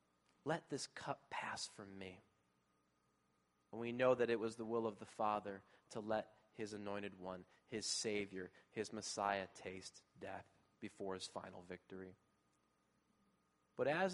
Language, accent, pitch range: English, American, 105-160 Hz